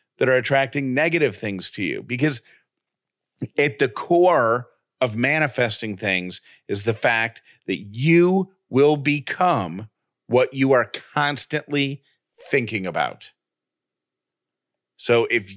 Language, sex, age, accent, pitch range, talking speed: English, male, 40-59, American, 115-145 Hz, 110 wpm